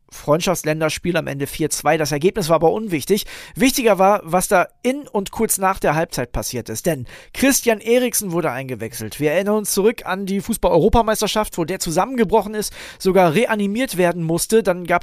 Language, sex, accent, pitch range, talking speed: German, male, German, 160-215 Hz, 170 wpm